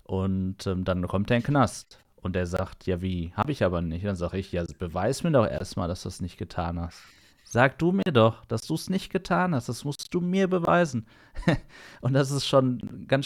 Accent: German